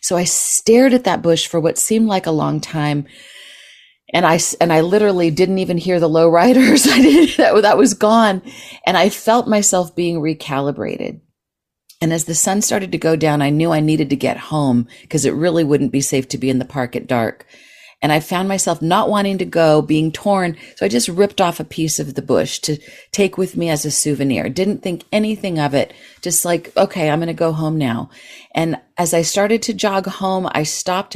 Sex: female